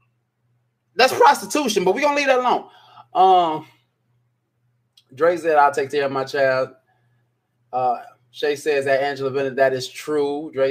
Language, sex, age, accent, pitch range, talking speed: English, male, 20-39, American, 125-155 Hz, 150 wpm